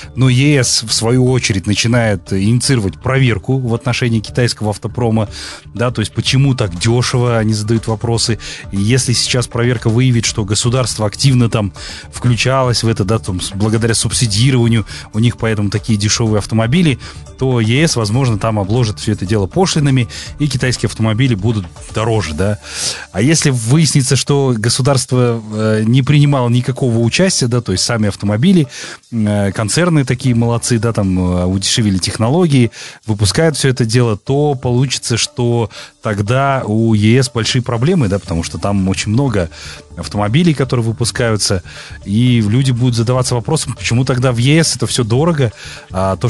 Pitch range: 105-130 Hz